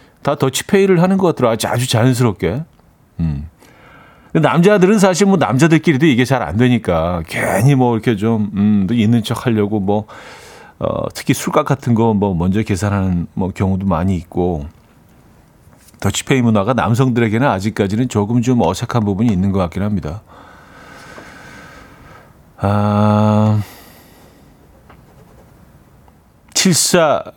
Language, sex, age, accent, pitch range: Korean, male, 40-59, native, 100-135 Hz